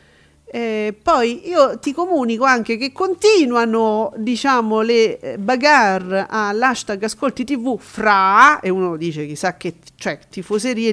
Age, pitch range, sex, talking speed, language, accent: 40-59, 195-270 Hz, female, 125 wpm, Italian, native